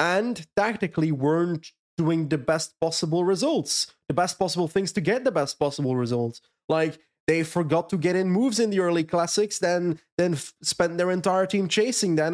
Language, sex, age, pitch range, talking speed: English, male, 20-39, 155-185 Hz, 185 wpm